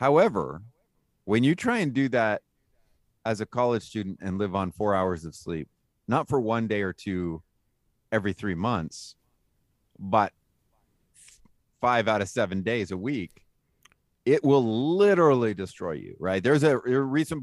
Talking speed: 155 wpm